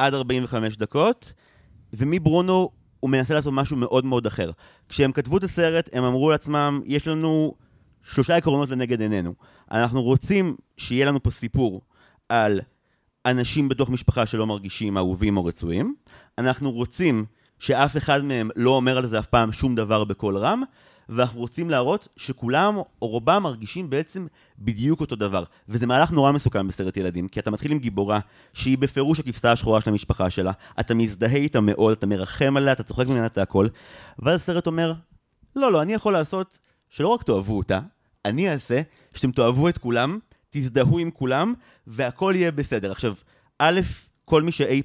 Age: 30-49